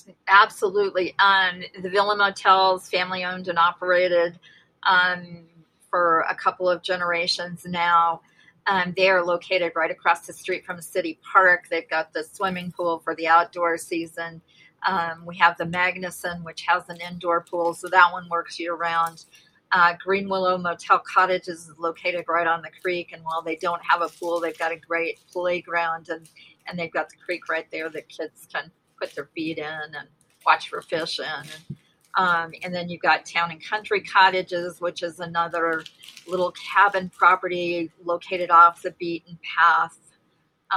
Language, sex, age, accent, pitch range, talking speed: English, female, 40-59, American, 170-185 Hz, 165 wpm